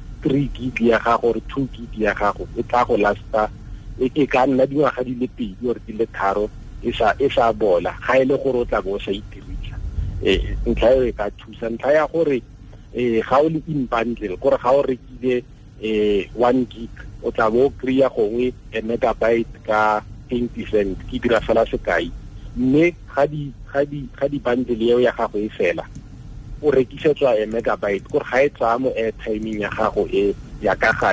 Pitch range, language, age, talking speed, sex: 105-130 Hz, English, 50-69, 65 wpm, male